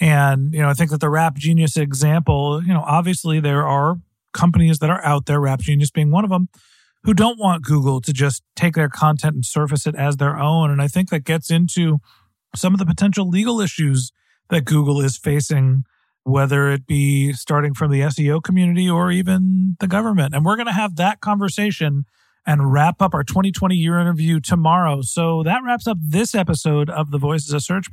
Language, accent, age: English, American, 40-59